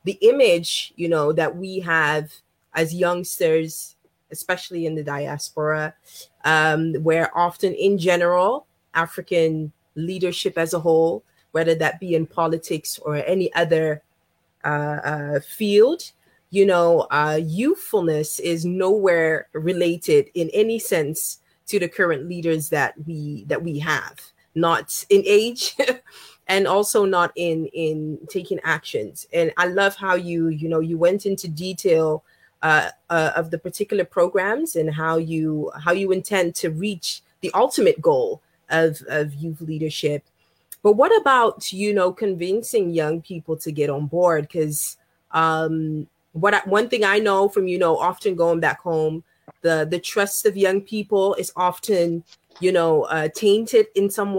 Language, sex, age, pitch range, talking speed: English, female, 20-39, 160-195 Hz, 150 wpm